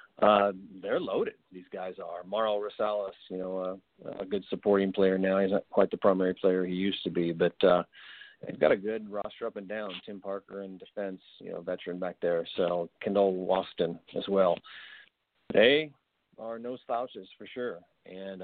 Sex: male